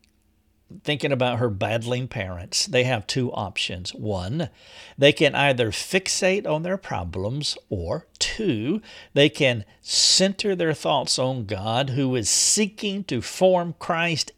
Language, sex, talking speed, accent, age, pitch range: English, male, 135 wpm, American, 50-69, 110-150 Hz